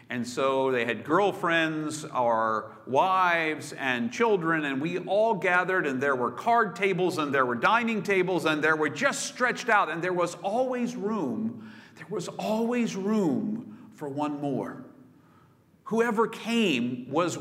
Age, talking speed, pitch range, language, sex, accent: 50-69, 150 wpm, 150-225 Hz, English, male, American